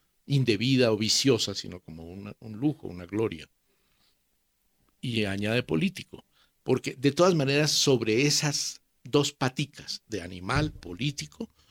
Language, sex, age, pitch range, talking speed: Spanish, male, 50-69, 100-140 Hz, 120 wpm